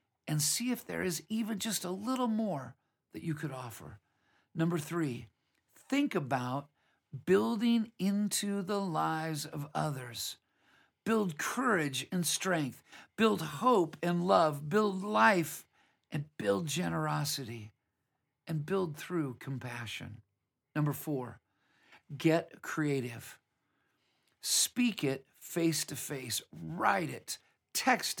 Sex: male